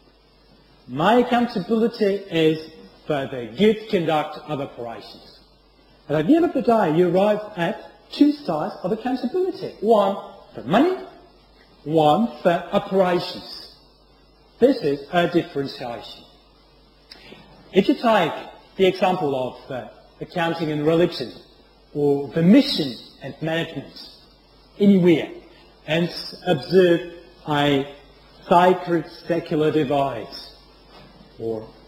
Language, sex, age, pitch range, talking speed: French, male, 40-59, 150-215 Hz, 105 wpm